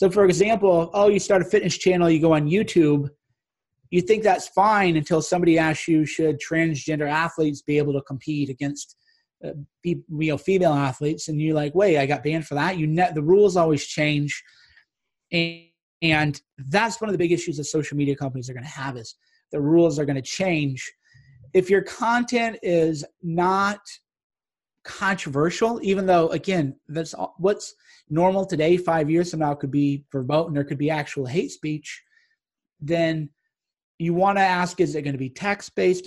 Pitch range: 145-180 Hz